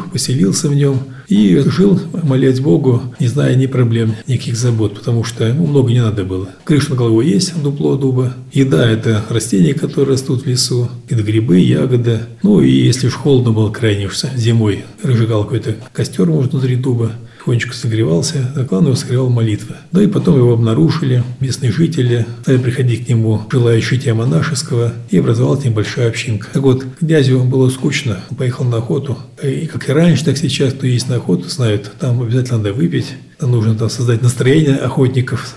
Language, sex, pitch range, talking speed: Russian, male, 115-140 Hz, 175 wpm